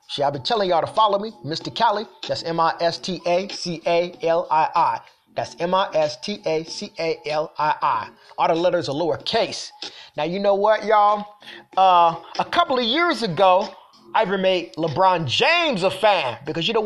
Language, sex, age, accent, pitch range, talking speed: English, male, 30-49, American, 170-255 Hz, 140 wpm